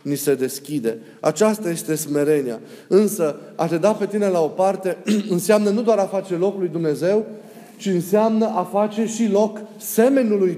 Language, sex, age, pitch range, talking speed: Romanian, male, 30-49, 175-210 Hz, 170 wpm